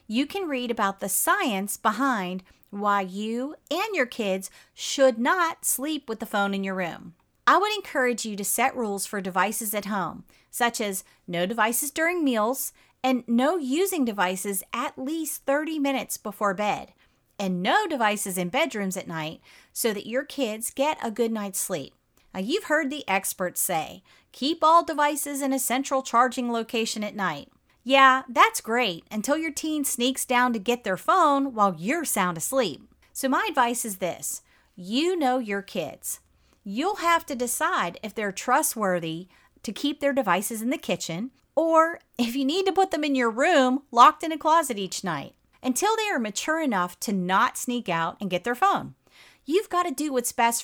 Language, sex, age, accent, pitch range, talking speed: English, female, 40-59, American, 200-285 Hz, 180 wpm